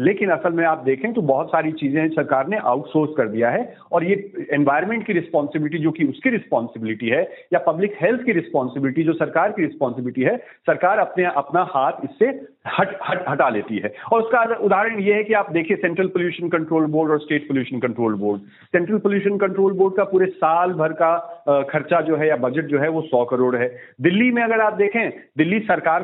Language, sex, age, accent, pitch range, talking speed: Hindi, male, 40-59, native, 150-195 Hz, 125 wpm